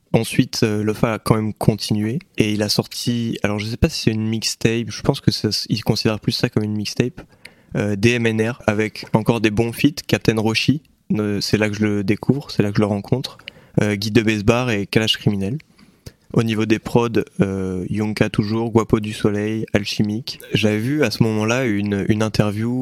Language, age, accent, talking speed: French, 20-39, French, 200 wpm